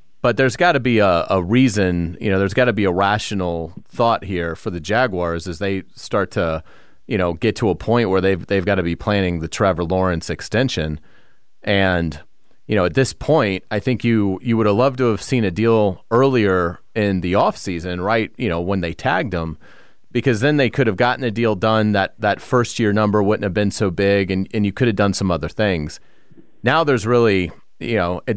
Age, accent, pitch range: 30-49, American, 95-120 Hz